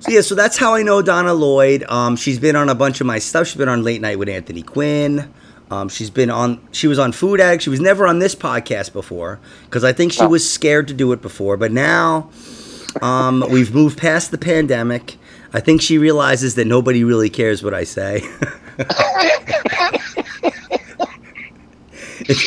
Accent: American